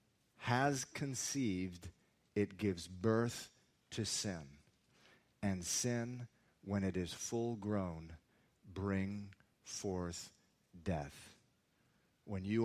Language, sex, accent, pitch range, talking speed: English, male, American, 90-125 Hz, 90 wpm